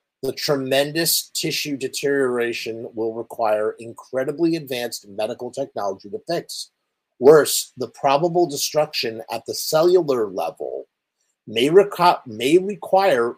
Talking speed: 110 wpm